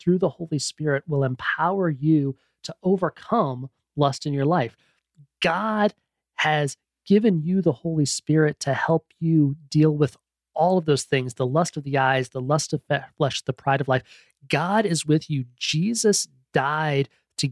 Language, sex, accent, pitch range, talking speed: English, male, American, 140-175 Hz, 170 wpm